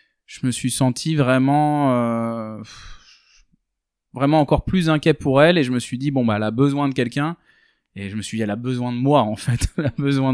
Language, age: French, 20-39